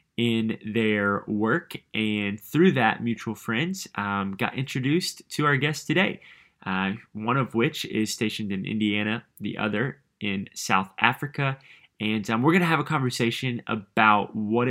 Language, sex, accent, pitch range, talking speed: English, male, American, 105-125 Hz, 150 wpm